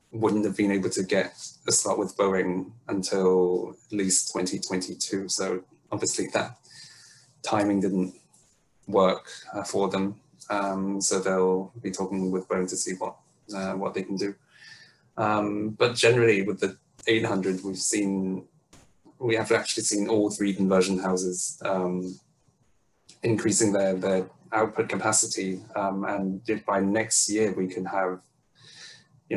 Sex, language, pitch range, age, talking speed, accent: male, English, 95-105 Hz, 20-39, 145 wpm, British